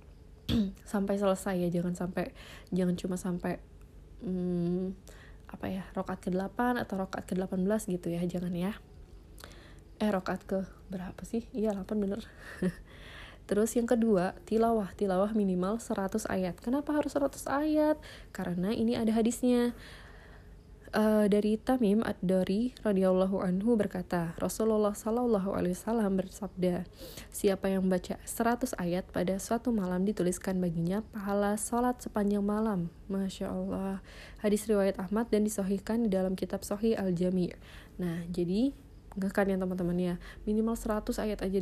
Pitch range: 185-215 Hz